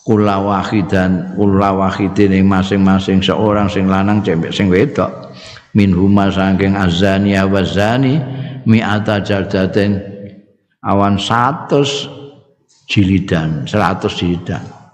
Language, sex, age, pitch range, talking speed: Indonesian, male, 50-69, 95-115 Hz, 80 wpm